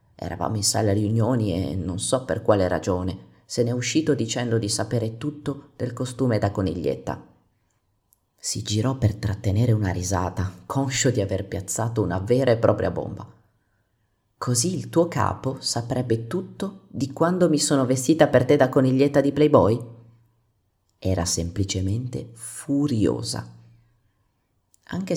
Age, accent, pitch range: 30-49, native, 100-125 Hz